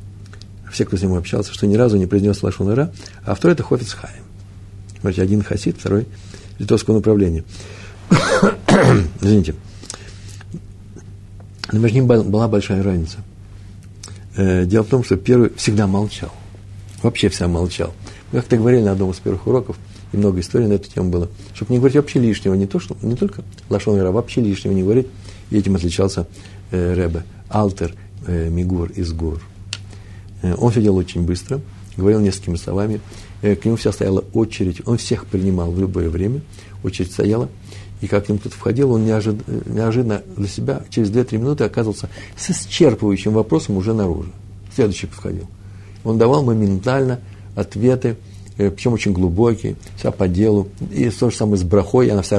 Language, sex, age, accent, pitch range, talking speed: Russian, male, 60-79, native, 95-110 Hz, 160 wpm